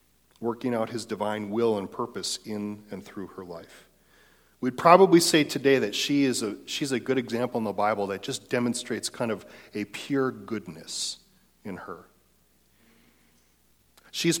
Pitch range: 105-130 Hz